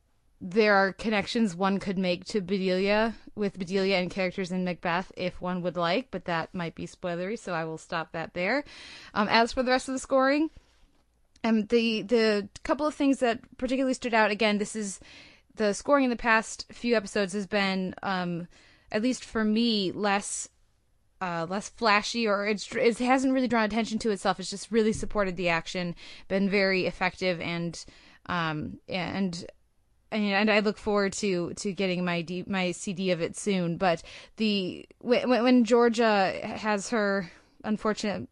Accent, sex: American, female